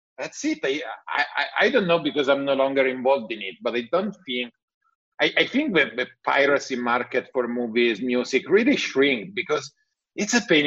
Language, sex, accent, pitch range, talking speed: English, male, Italian, 115-155 Hz, 190 wpm